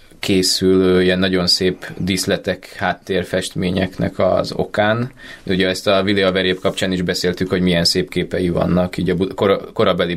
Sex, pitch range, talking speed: male, 90-95 Hz, 155 wpm